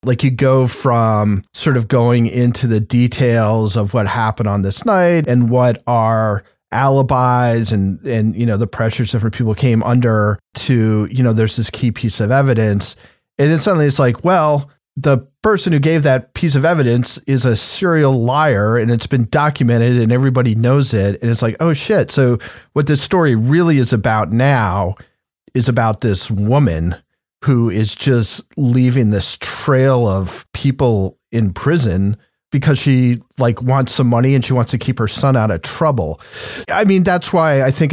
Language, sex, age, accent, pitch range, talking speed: English, male, 40-59, American, 115-140 Hz, 180 wpm